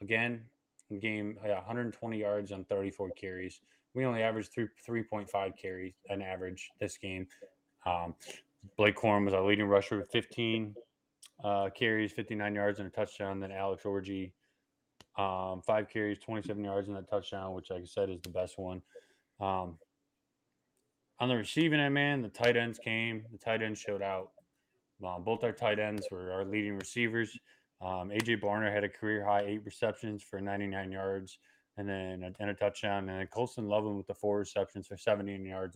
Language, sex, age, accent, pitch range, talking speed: English, male, 20-39, American, 95-120 Hz, 175 wpm